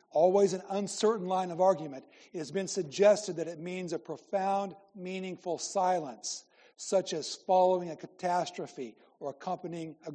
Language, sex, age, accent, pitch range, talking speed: English, male, 60-79, American, 165-190 Hz, 150 wpm